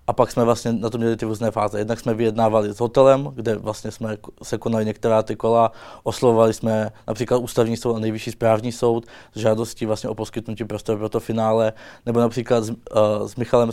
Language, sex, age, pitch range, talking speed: Czech, male, 20-39, 110-120 Hz, 205 wpm